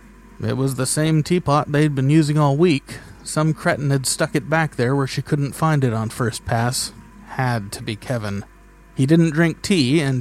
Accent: American